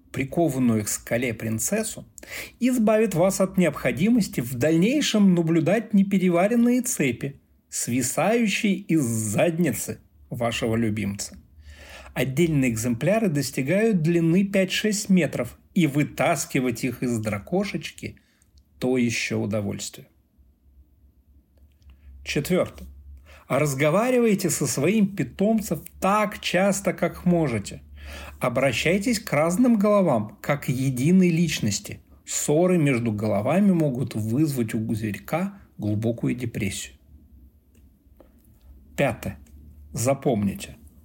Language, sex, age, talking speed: Russian, male, 40-59, 90 wpm